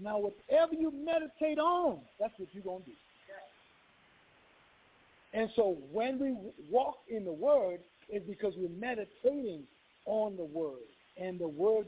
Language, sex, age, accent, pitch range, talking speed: English, male, 50-69, American, 190-280 Hz, 150 wpm